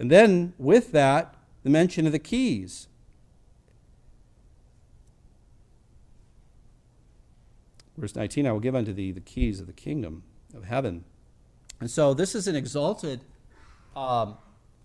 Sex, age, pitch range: male, 40-59, 120-170 Hz